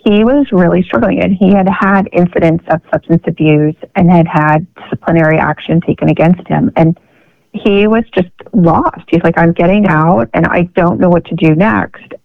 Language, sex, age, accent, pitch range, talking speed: English, female, 30-49, American, 165-200 Hz, 185 wpm